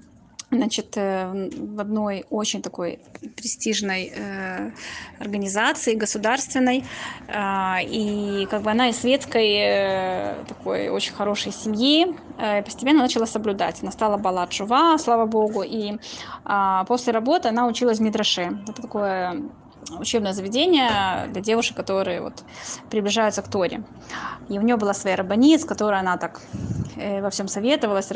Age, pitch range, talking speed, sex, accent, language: 20-39, 200-250 Hz, 125 wpm, female, native, Russian